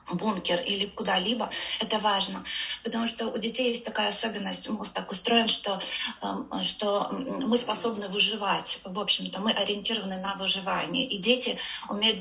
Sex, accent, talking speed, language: female, native, 145 wpm, Russian